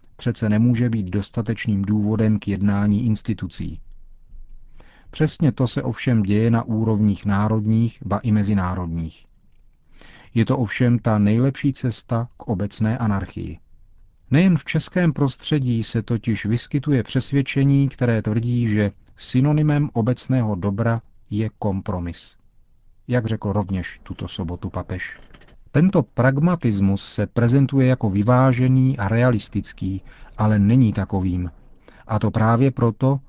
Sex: male